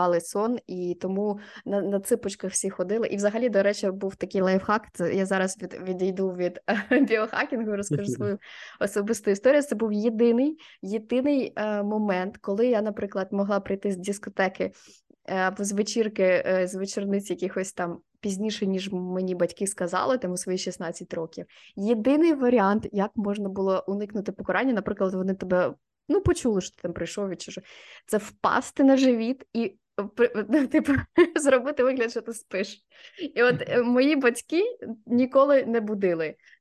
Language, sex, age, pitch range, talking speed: Ukrainian, female, 20-39, 195-250 Hz, 155 wpm